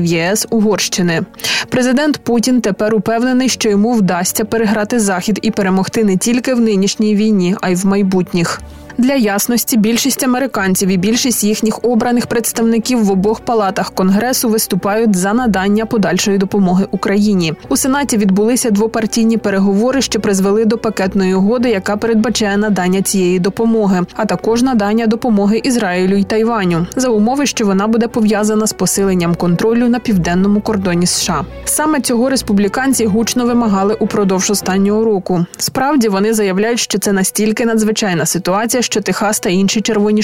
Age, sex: 20-39, female